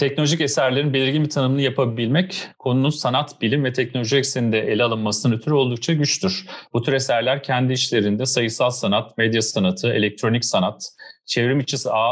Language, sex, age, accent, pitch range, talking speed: Turkish, male, 40-59, native, 110-140 Hz, 155 wpm